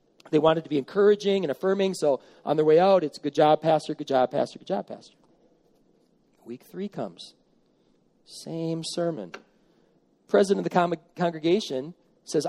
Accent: American